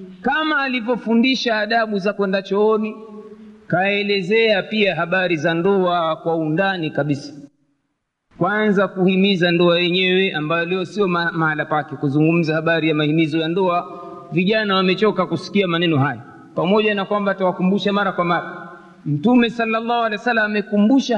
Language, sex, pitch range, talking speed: Swahili, male, 175-230 Hz, 135 wpm